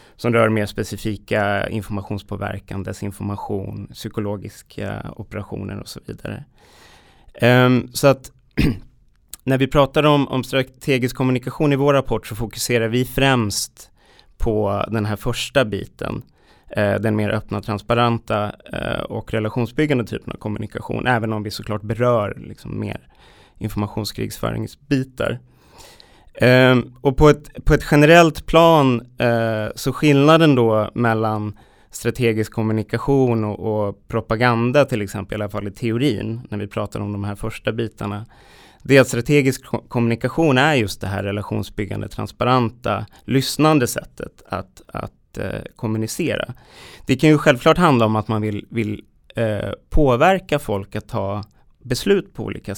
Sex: male